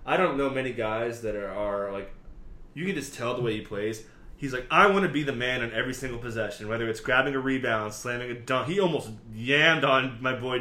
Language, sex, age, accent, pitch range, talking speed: English, male, 20-39, American, 105-130 Hz, 245 wpm